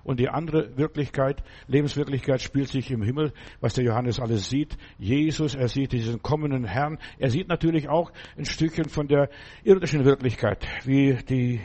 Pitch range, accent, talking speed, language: 125-150 Hz, German, 165 wpm, German